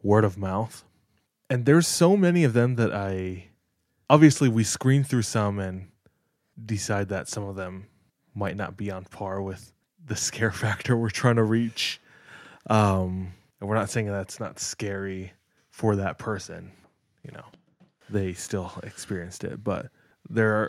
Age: 20-39